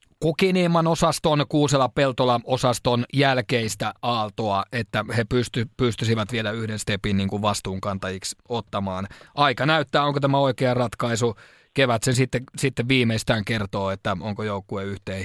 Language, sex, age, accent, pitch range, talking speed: Finnish, male, 30-49, native, 105-130 Hz, 130 wpm